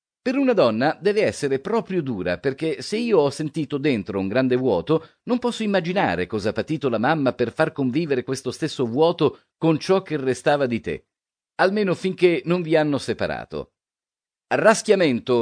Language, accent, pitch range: Italian, native, 125-170 Hz